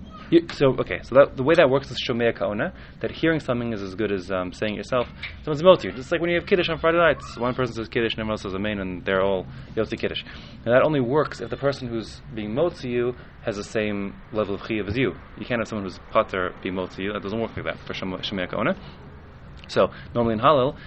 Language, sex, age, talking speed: English, male, 20-39, 260 wpm